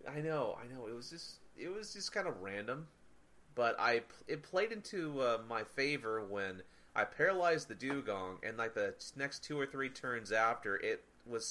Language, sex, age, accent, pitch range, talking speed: English, male, 30-49, American, 95-135 Hz, 195 wpm